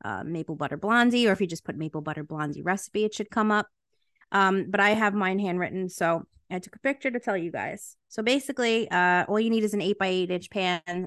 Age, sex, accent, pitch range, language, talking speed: 20-39, female, American, 180-215 Hz, English, 245 wpm